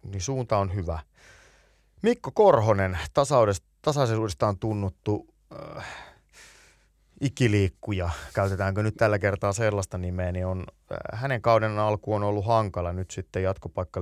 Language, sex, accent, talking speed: Finnish, male, native, 120 wpm